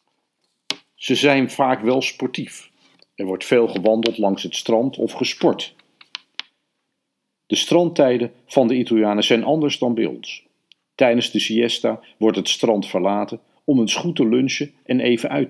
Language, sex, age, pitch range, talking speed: Dutch, male, 50-69, 105-135 Hz, 150 wpm